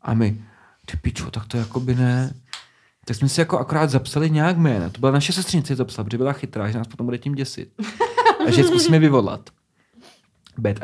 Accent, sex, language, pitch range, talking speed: native, male, Czech, 110-150 Hz, 210 wpm